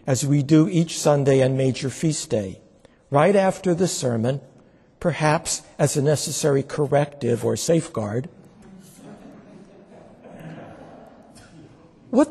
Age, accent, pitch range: 60-79, American, 130-180 Hz